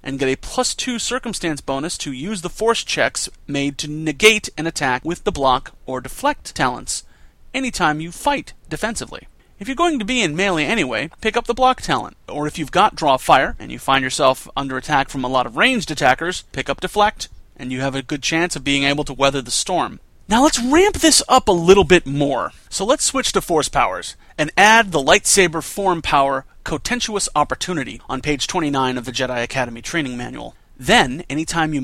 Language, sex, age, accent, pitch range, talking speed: English, male, 30-49, American, 135-200 Hz, 205 wpm